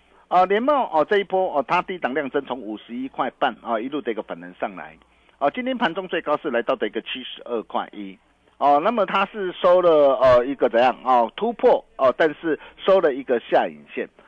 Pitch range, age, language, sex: 120-180 Hz, 50-69, Chinese, male